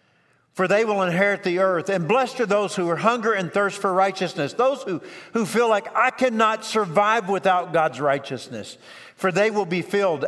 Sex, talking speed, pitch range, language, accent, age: male, 195 wpm, 160-220 Hz, English, American, 50-69